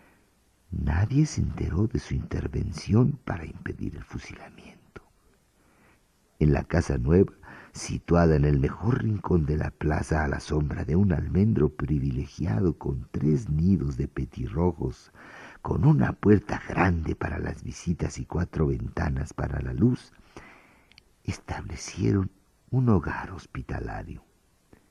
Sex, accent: male, Mexican